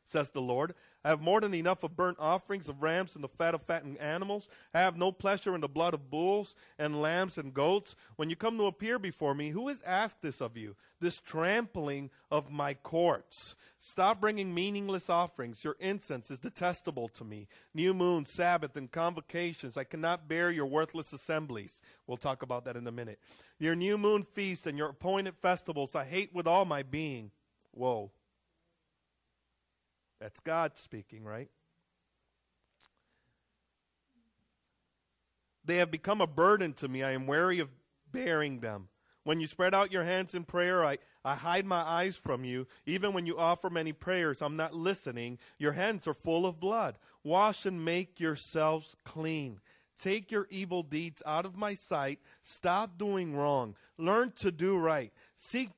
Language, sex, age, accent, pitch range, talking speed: English, male, 40-59, American, 140-185 Hz, 175 wpm